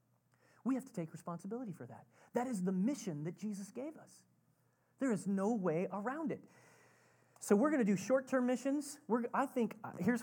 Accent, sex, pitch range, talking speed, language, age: American, male, 145-235 Hz, 190 wpm, English, 30-49